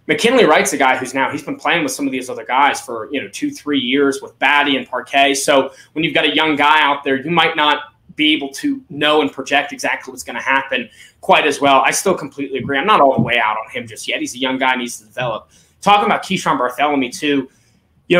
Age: 20-39